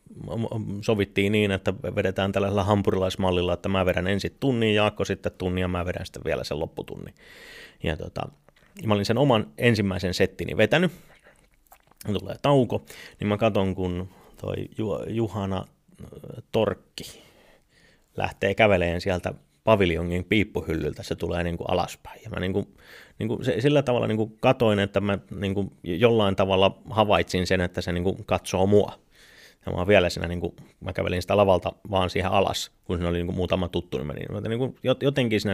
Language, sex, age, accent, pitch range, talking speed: Finnish, male, 30-49, native, 90-110 Hz, 170 wpm